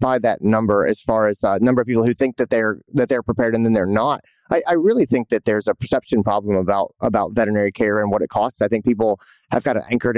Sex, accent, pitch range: male, American, 110-140 Hz